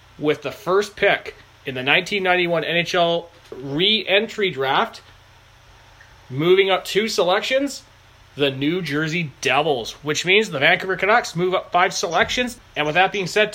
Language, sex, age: English, male, 30-49